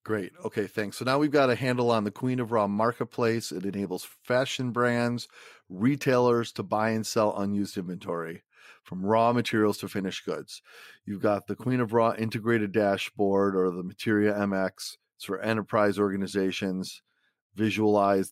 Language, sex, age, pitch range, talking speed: English, male, 40-59, 100-120 Hz, 160 wpm